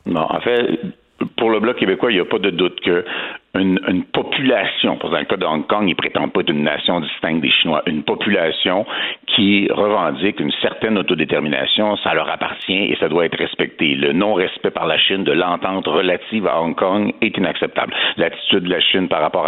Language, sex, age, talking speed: French, male, 60-79, 205 wpm